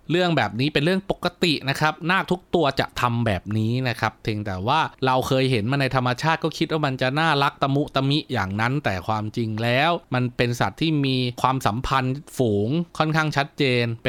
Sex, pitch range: male, 120-155 Hz